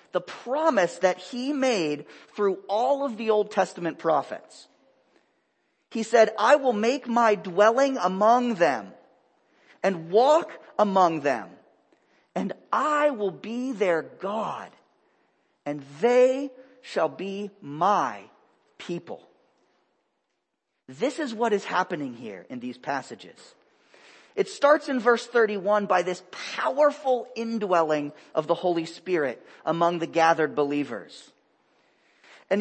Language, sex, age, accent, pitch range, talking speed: English, male, 40-59, American, 180-255 Hz, 120 wpm